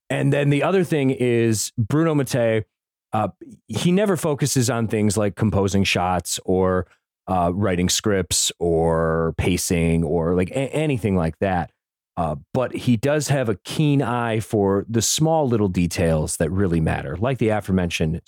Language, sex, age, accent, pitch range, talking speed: English, male, 30-49, American, 100-130 Hz, 160 wpm